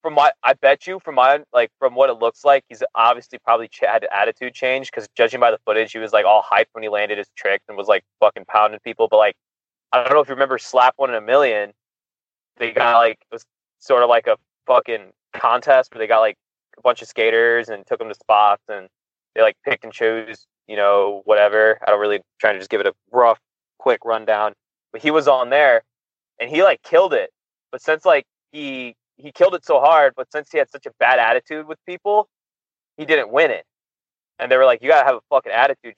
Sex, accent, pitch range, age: male, American, 115-155 Hz, 20-39